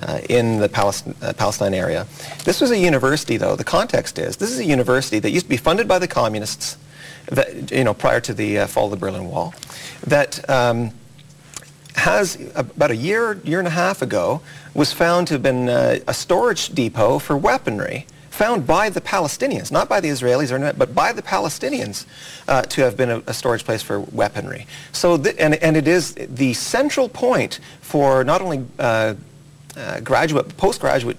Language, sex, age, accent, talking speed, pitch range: English, male, 40-59, American, 190 wpm, 130-170 Hz